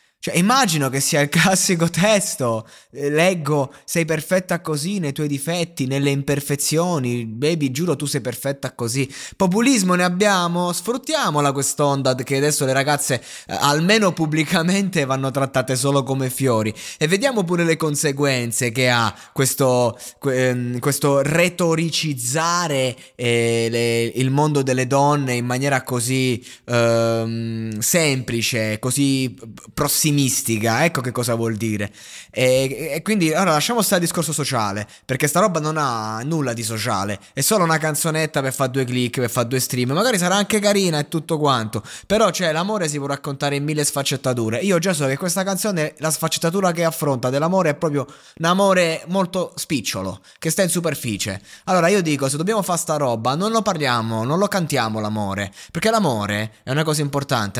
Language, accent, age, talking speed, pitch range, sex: Italian, native, 20-39, 155 wpm, 125-170 Hz, male